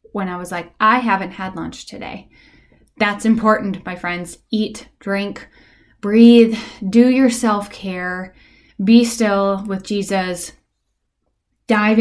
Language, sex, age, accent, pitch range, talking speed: English, female, 10-29, American, 205-240 Hz, 120 wpm